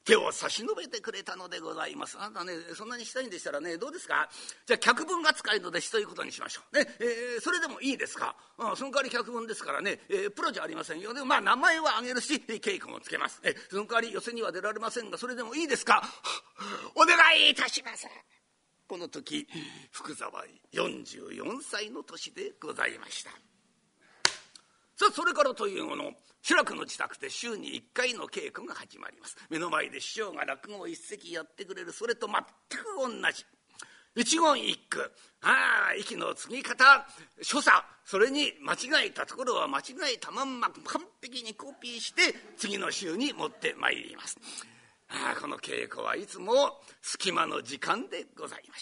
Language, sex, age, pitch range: Japanese, male, 50-69, 245-410 Hz